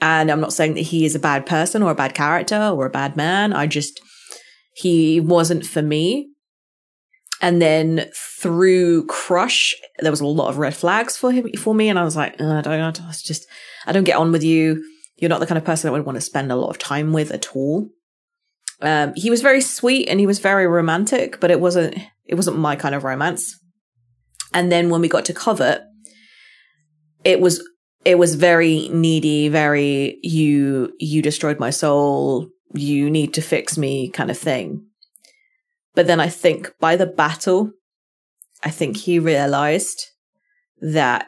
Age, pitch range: 30-49, 150-185 Hz